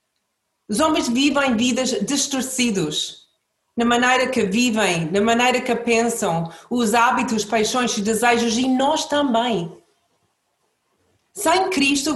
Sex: female